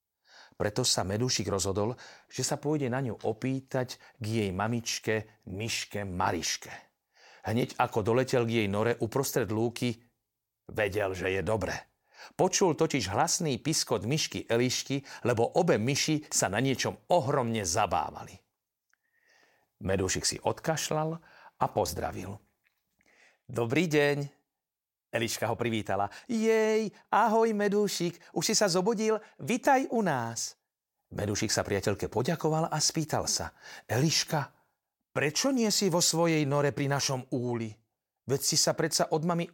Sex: male